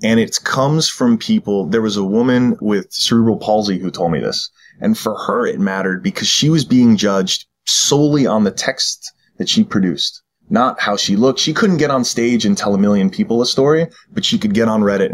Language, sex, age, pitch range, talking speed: English, male, 20-39, 110-165 Hz, 220 wpm